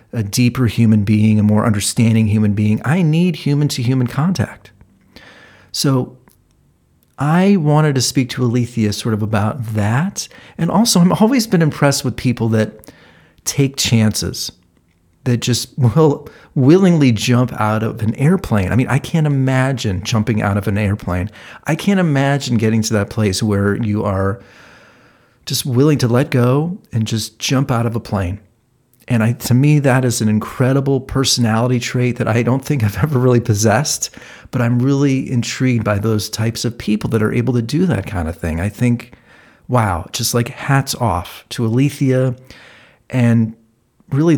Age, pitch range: 40-59, 110-135 Hz